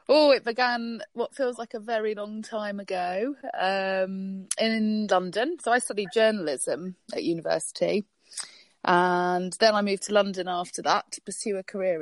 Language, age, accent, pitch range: English, 30-49, British, 170-210 Hz